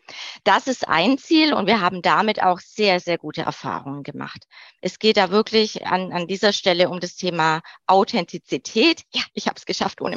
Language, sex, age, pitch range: German, female, 20-39, 185-215 Hz